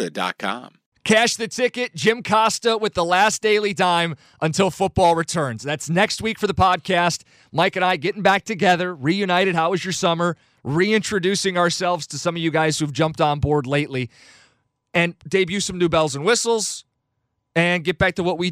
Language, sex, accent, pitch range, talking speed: English, male, American, 150-185 Hz, 180 wpm